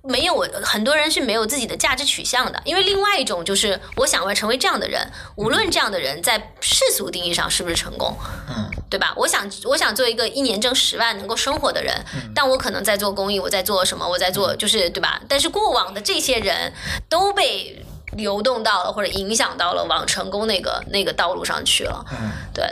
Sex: female